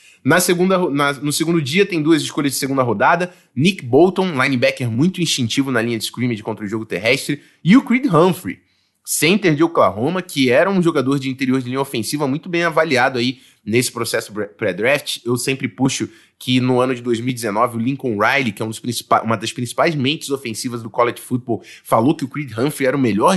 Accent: Brazilian